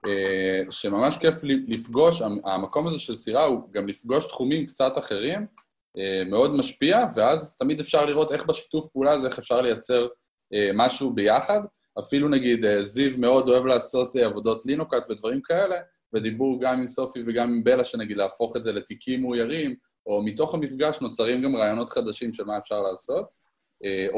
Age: 20-39